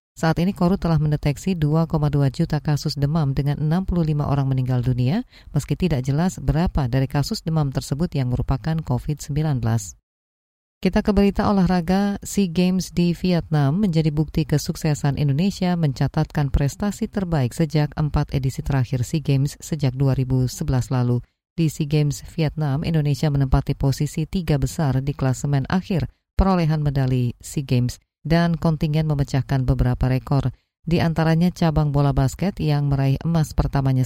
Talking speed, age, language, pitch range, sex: 140 wpm, 20-39, Indonesian, 140-170 Hz, female